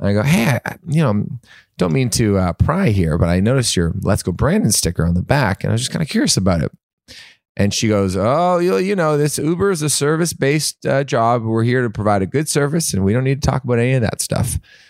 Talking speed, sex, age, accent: 260 wpm, male, 30-49, American